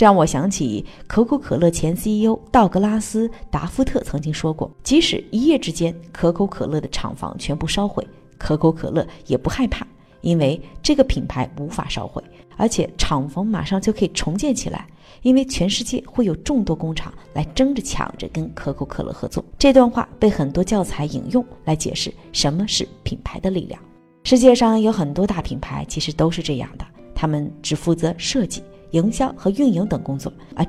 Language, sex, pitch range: Chinese, female, 155-235 Hz